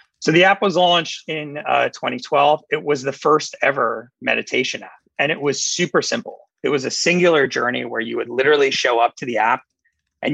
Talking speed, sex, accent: 205 wpm, male, American